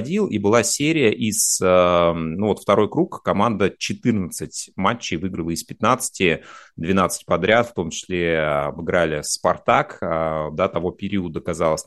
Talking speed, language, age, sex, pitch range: 130 wpm, Russian, 30-49, male, 85-110 Hz